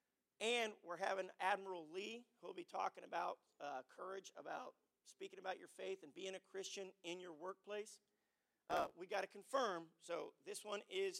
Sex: male